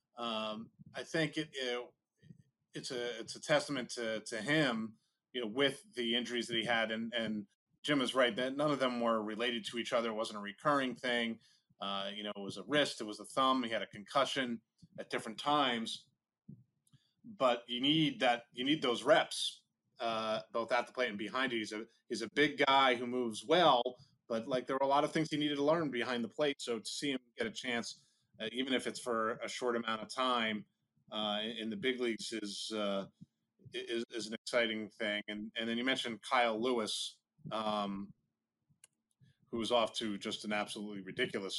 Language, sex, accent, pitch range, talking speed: English, male, American, 110-130 Hz, 200 wpm